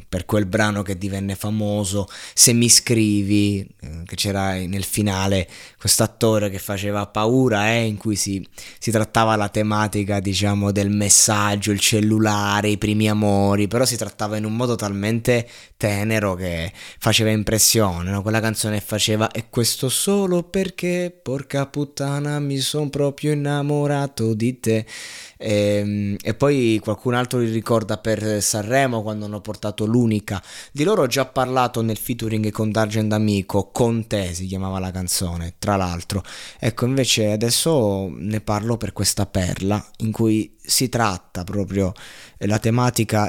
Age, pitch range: 20-39, 100-115 Hz